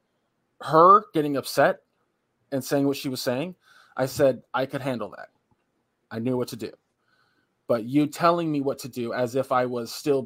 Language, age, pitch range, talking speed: English, 20-39, 115-140 Hz, 185 wpm